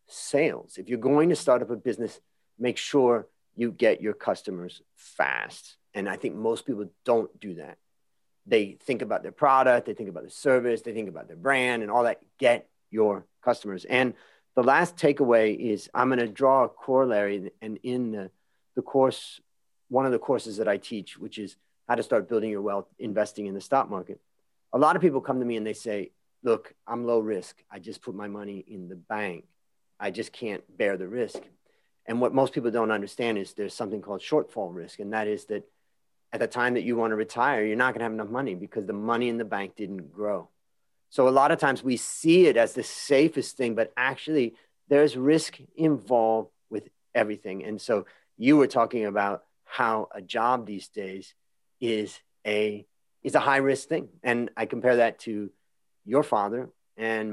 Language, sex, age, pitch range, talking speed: English, male, 40-59, 105-125 Hz, 200 wpm